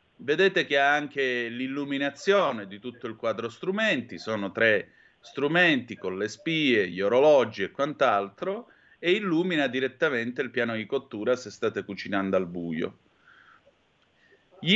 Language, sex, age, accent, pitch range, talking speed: Italian, male, 30-49, native, 105-145 Hz, 135 wpm